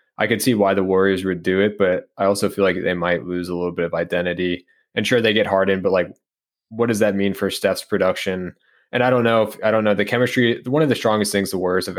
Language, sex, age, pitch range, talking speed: English, male, 20-39, 90-100 Hz, 270 wpm